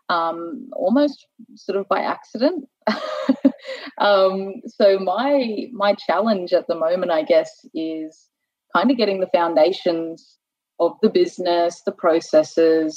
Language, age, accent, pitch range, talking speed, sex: English, 20-39, Australian, 165-265 Hz, 125 wpm, female